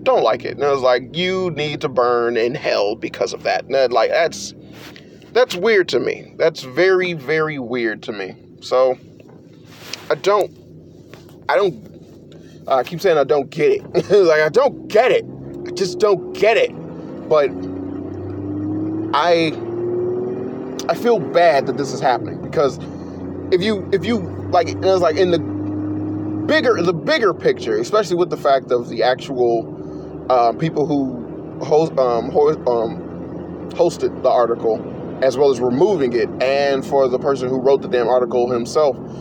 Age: 30-49